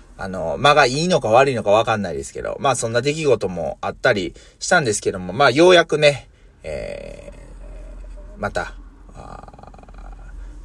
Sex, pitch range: male, 105-155 Hz